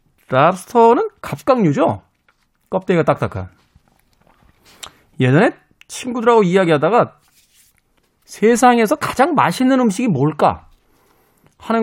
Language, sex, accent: Korean, male, native